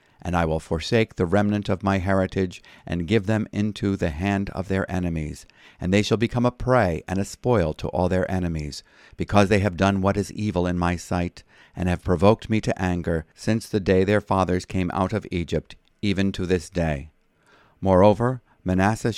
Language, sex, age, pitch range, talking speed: English, male, 50-69, 85-105 Hz, 195 wpm